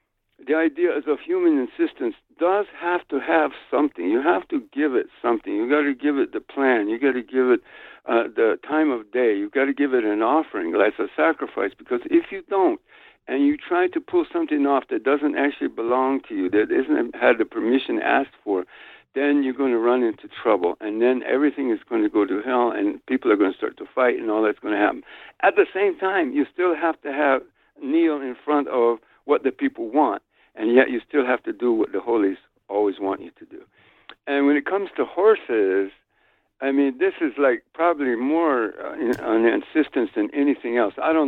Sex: male